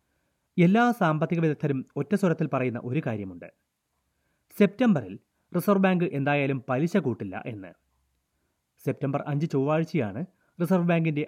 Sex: male